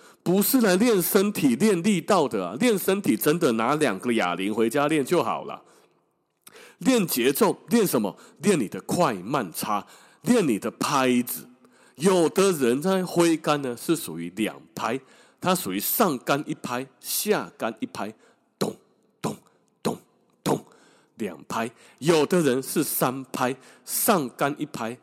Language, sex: Chinese, male